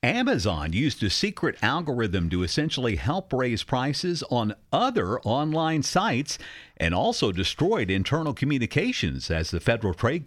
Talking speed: 135 wpm